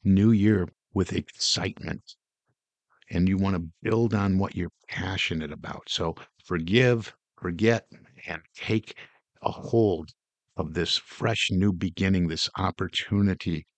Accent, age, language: American, 50-69, English